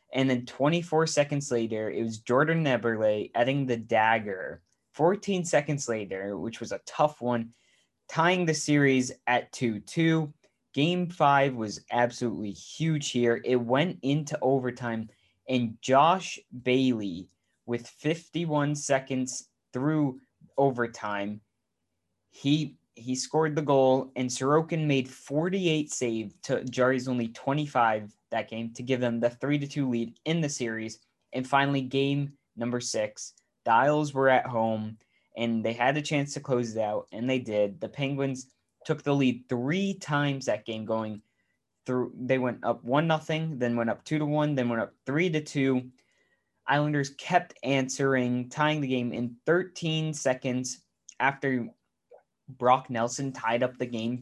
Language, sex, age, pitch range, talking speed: English, male, 20-39, 120-145 Hz, 150 wpm